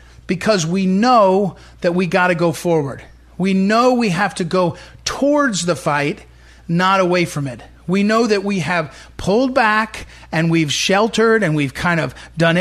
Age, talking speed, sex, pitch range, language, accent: 40-59, 170 wpm, male, 175-225 Hz, English, American